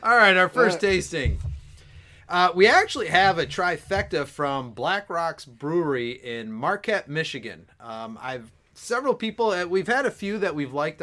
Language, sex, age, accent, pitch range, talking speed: English, male, 30-49, American, 120-160 Hz, 160 wpm